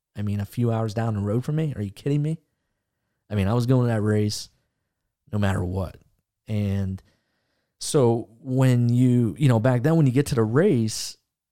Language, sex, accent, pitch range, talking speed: English, male, American, 100-125 Hz, 205 wpm